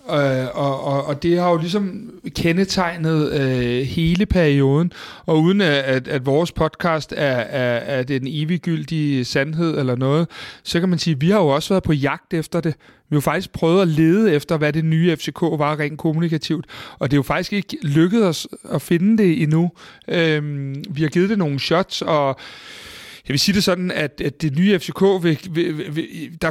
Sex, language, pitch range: male, Danish, 150-180 Hz